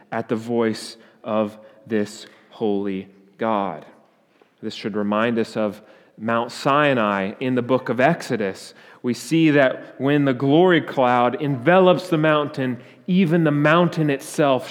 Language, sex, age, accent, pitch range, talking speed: English, male, 30-49, American, 110-140 Hz, 135 wpm